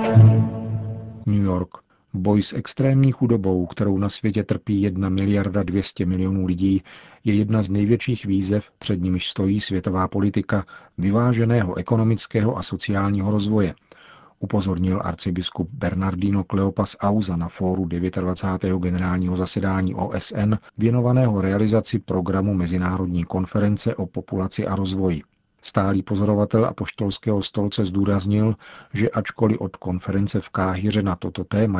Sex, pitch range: male, 95-105 Hz